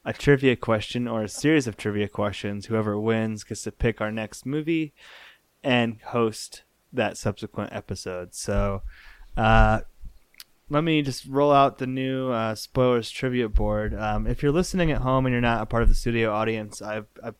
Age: 20-39